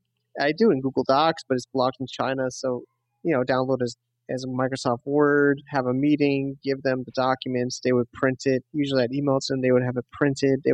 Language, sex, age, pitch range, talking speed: English, male, 30-49, 125-145 Hz, 235 wpm